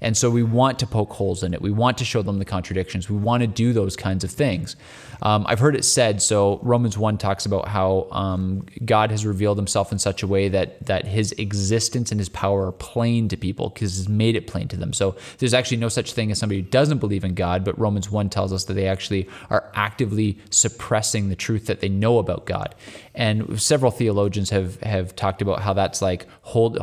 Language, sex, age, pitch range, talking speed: English, male, 20-39, 100-120 Hz, 235 wpm